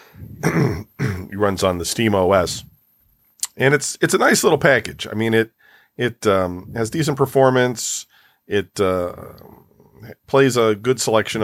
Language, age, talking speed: English, 40-59, 140 wpm